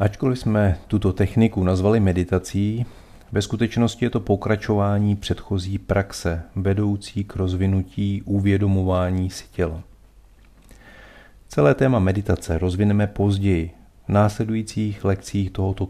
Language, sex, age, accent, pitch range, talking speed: Czech, male, 40-59, native, 95-110 Hz, 105 wpm